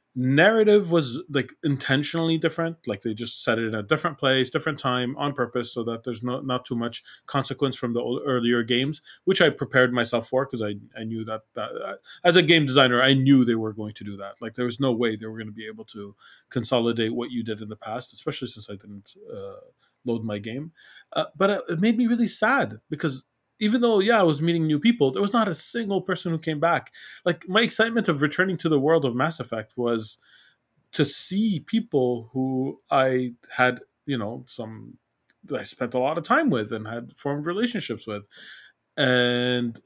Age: 20-39